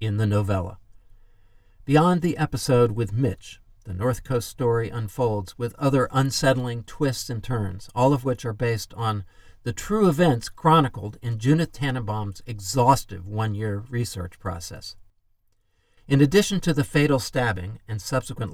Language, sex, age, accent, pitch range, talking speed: English, male, 50-69, American, 100-140 Hz, 140 wpm